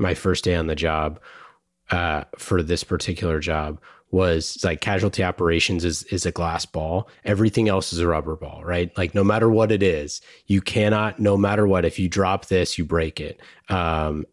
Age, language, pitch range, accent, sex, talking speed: 30-49, English, 85-100 Hz, American, male, 195 wpm